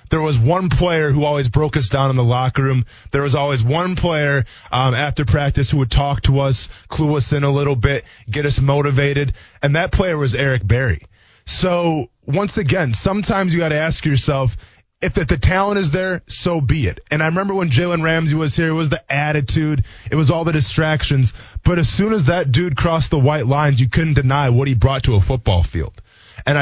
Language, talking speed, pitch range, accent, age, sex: English, 220 wpm, 125-160 Hz, American, 20-39, male